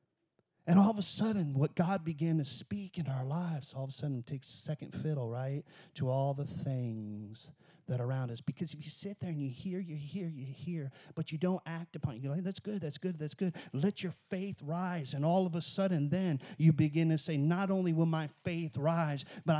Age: 40-59